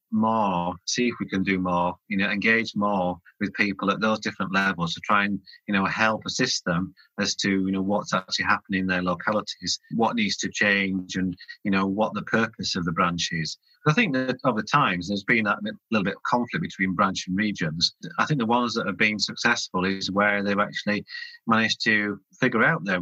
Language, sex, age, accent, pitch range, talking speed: English, male, 30-49, British, 95-120 Hz, 215 wpm